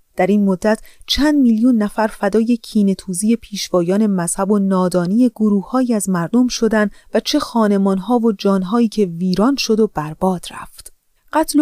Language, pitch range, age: Persian, 190-250 Hz, 30-49